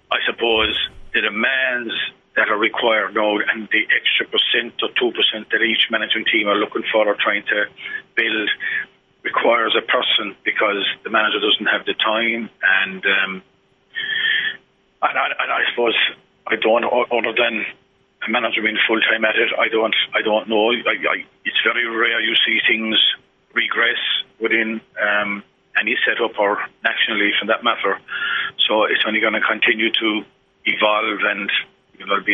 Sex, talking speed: male, 165 wpm